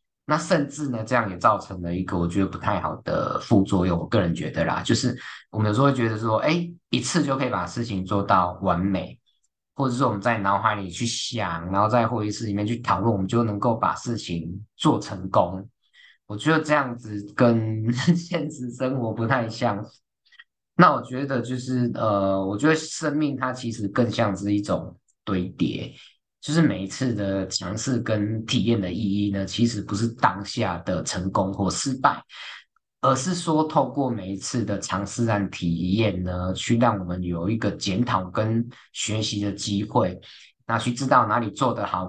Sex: male